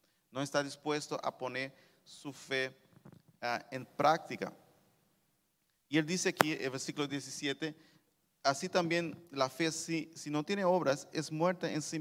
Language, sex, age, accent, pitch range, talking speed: Spanish, male, 40-59, Venezuelan, 125-165 Hz, 155 wpm